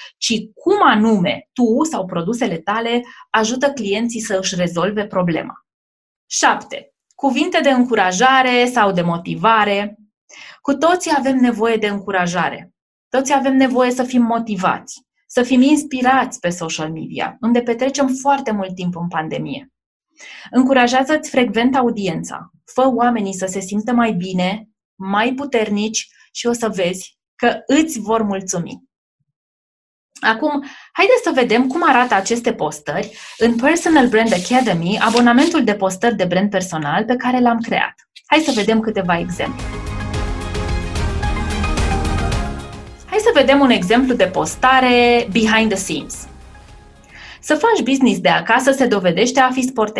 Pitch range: 185-255 Hz